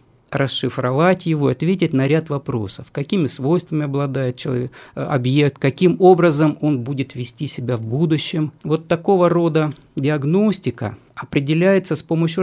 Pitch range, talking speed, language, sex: 125-160 Hz, 125 wpm, Russian, male